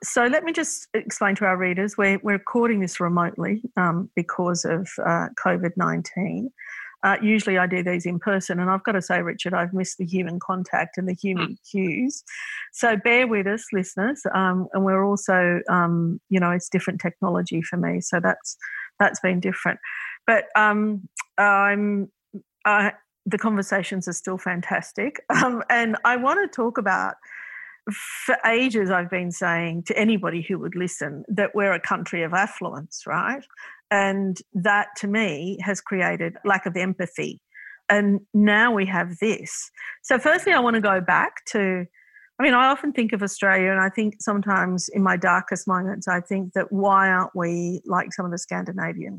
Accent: Australian